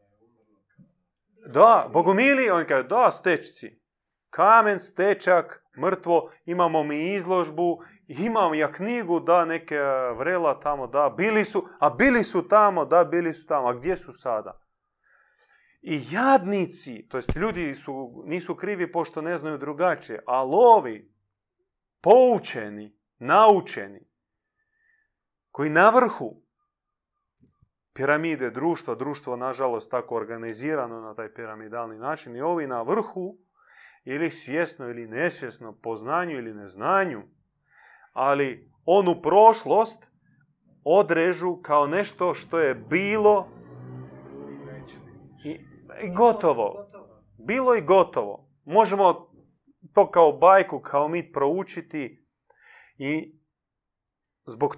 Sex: male